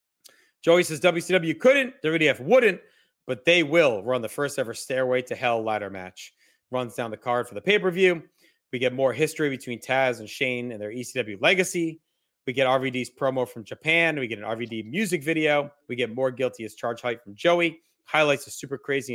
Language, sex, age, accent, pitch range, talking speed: English, male, 30-49, American, 120-165 Hz, 190 wpm